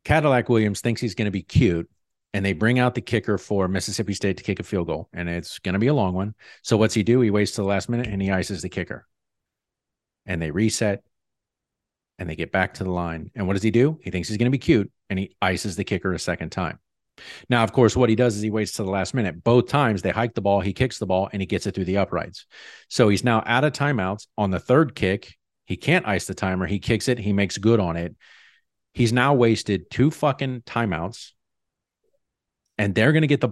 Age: 40-59